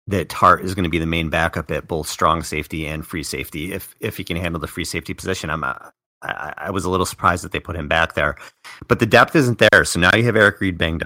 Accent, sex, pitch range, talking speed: American, male, 80-100 Hz, 275 wpm